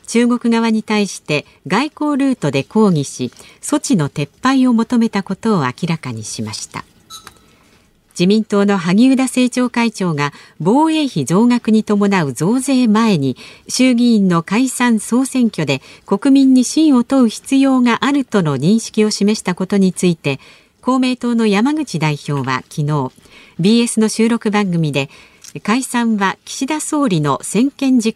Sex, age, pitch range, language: female, 50-69, 170-245 Hz, Japanese